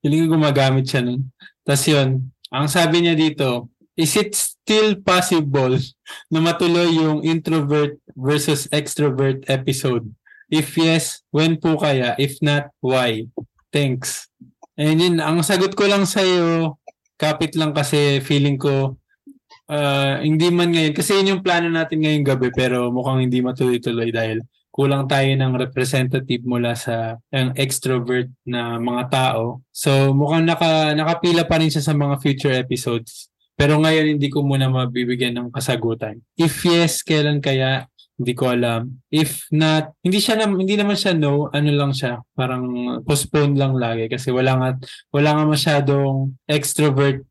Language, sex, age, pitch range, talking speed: Filipino, male, 20-39, 130-155 Hz, 150 wpm